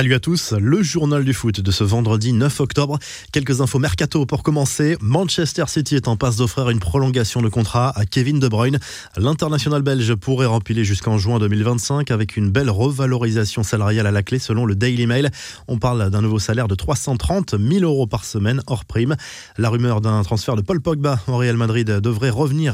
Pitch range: 110-135 Hz